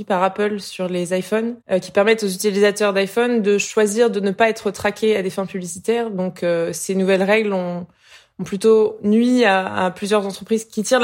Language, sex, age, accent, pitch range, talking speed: French, female, 20-39, French, 185-215 Hz, 200 wpm